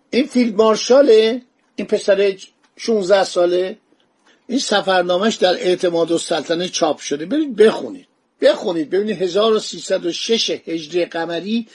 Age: 50-69